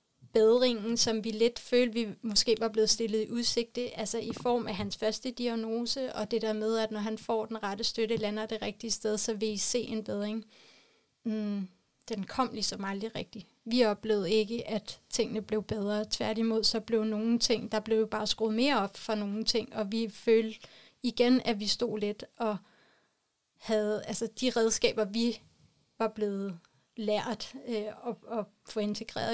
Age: 30-49